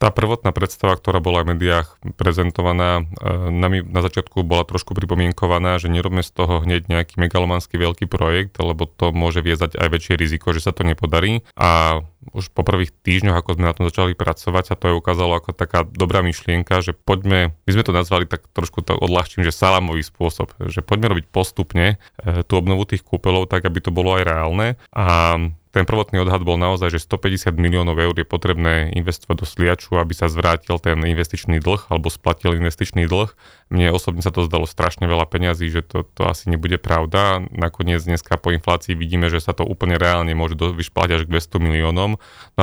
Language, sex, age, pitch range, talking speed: Slovak, male, 30-49, 85-95 Hz, 195 wpm